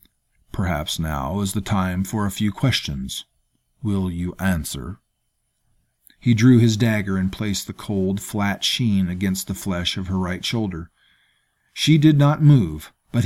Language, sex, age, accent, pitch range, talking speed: English, male, 50-69, American, 90-115 Hz, 155 wpm